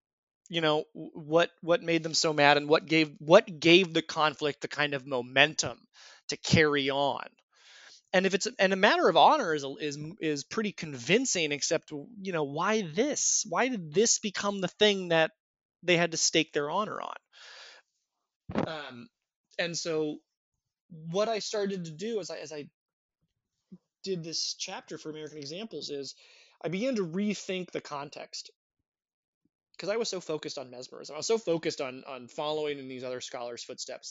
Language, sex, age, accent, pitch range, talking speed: English, male, 20-39, American, 145-185 Hz, 170 wpm